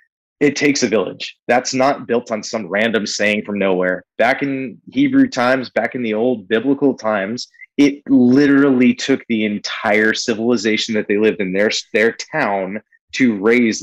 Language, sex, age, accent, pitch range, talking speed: English, male, 30-49, American, 105-150 Hz, 165 wpm